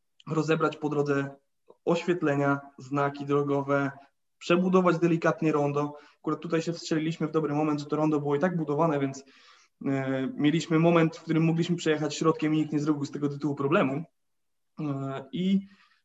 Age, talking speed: 20-39, 150 wpm